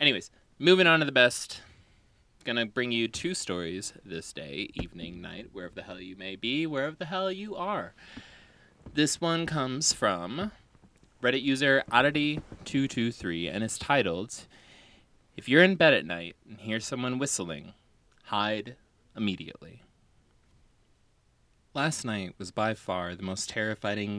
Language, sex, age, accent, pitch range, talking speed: English, male, 20-39, American, 90-120 Hz, 140 wpm